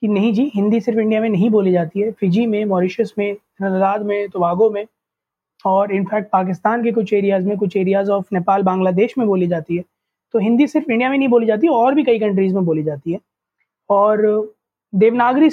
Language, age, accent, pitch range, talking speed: Hindi, 20-39, native, 195-240 Hz, 205 wpm